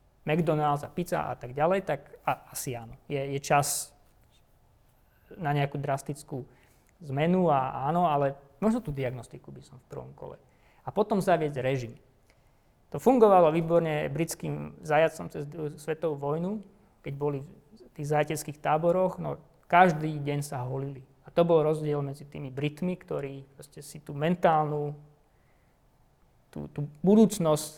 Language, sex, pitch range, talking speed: Slovak, male, 140-165 Hz, 135 wpm